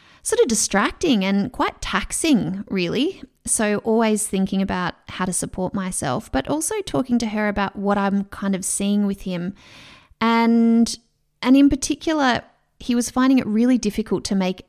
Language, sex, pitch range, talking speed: English, female, 195-230 Hz, 165 wpm